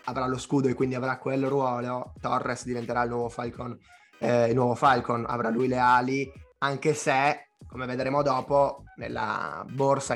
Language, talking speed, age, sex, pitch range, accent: Italian, 165 wpm, 20-39, male, 120-140 Hz, native